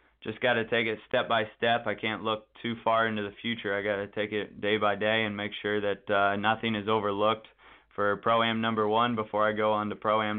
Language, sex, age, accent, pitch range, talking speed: English, male, 20-39, American, 105-115 Hz, 245 wpm